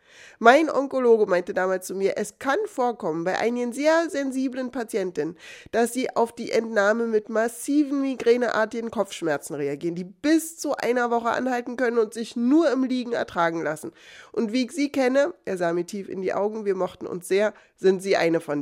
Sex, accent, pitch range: female, German, 185-250 Hz